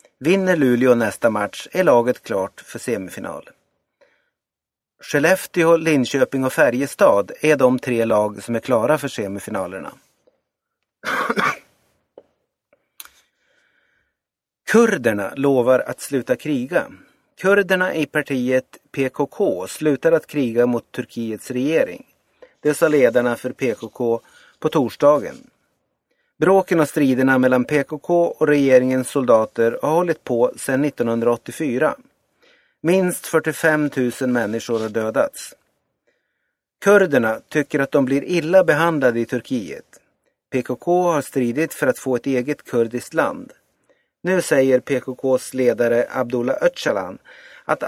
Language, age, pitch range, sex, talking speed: Swedish, 30-49, 125-170 Hz, male, 115 wpm